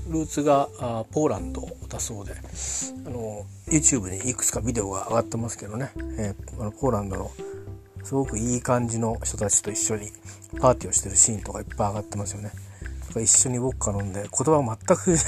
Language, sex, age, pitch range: Japanese, male, 40-59, 95-140 Hz